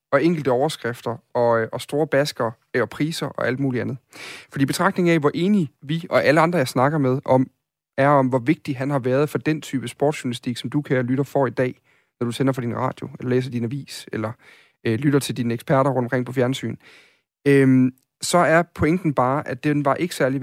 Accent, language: native, Danish